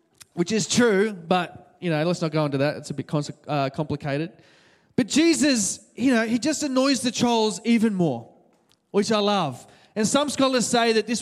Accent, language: Australian, English